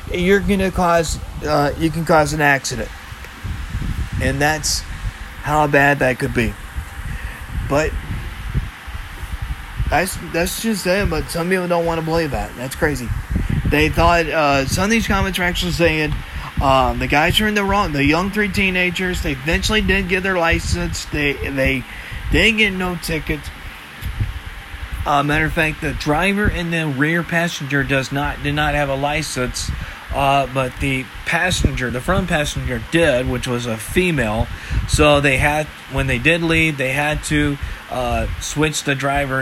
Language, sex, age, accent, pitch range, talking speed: English, male, 30-49, American, 120-165 Hz, 165 wpm